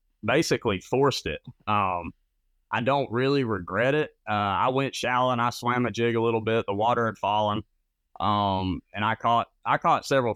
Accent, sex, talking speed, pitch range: American, male, 185 wpm, 100-125 Hz